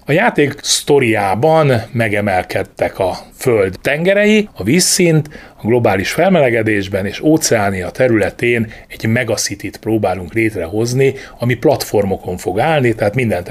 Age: 30-49